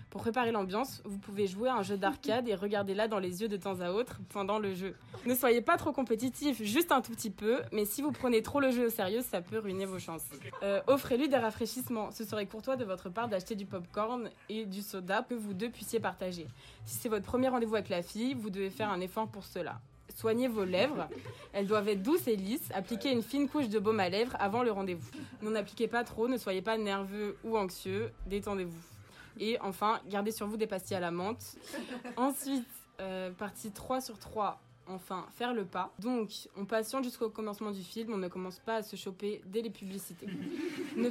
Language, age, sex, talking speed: French, 20-39, female, 220 wpm